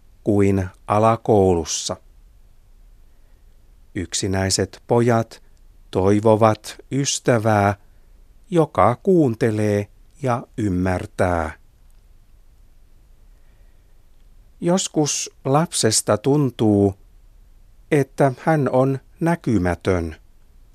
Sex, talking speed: male, 50 wpm